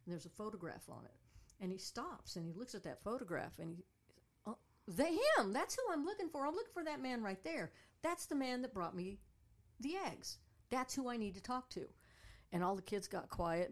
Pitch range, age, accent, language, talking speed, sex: 155-195 Hz, 60-79, American, English, 220 wpm, female